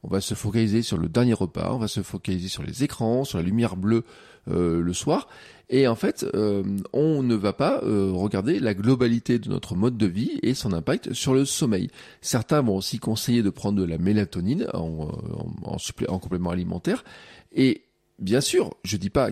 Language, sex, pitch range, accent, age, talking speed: French, male, 95-125 Hz, French, 40-59, 205 wpm